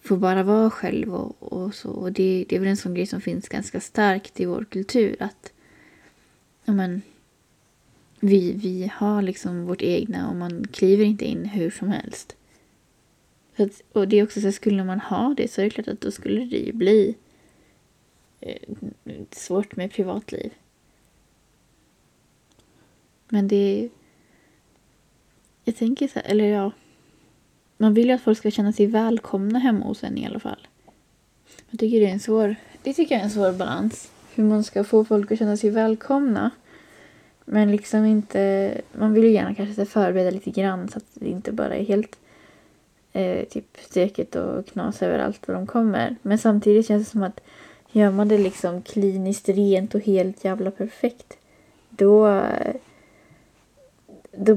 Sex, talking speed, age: female, 170 wpm, 20-39